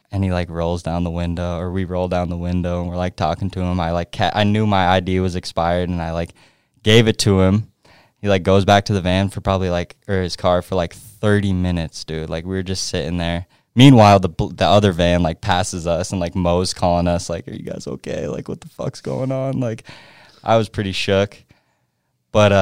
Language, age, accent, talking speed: English, 20-39, American, 235 wpm